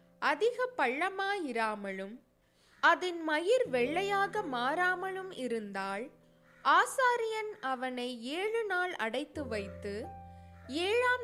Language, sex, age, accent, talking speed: Tamil, female, 20-39, native, 75 wpm